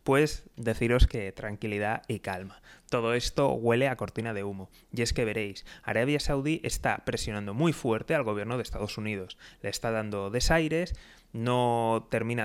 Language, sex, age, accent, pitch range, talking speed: Spanish, male, 20-39, Spanish, 110-145 Hz, 165 wpm